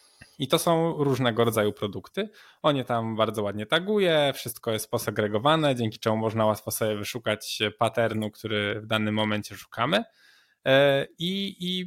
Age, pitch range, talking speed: 10-29, 110-140 Hz, 140 wpm